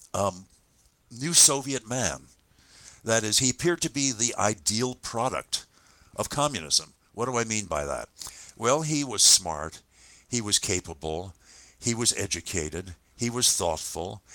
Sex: male